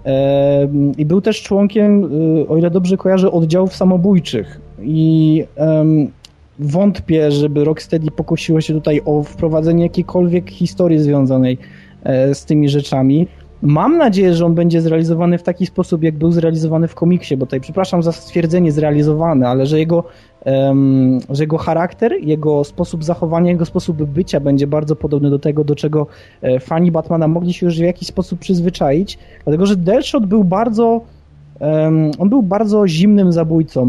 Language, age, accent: Polish, 20-39, native